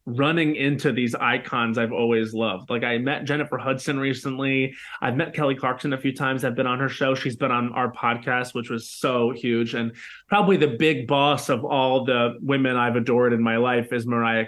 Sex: male